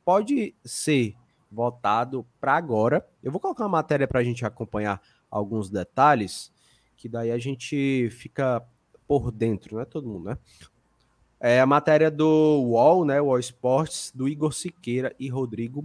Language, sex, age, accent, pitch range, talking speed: Portuguese, male, 20-39, Brazilian, 120-160 Hz, 155 wpm